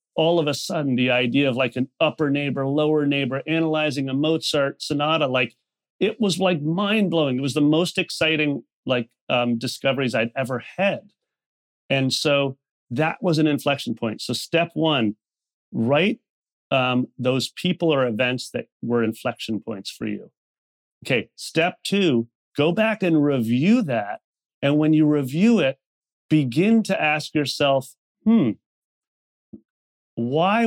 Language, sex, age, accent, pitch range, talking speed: English, male, 40-59, American, 120-160 Hz, 145 wpm